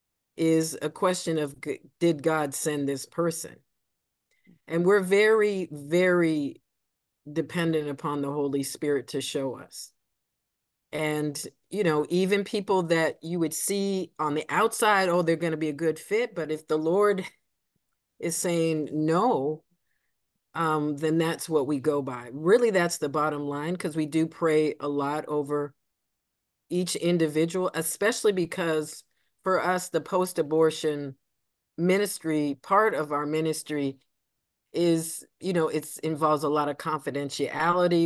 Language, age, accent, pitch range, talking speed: English, 40-59, American, 150-180 Hz, 140 wpm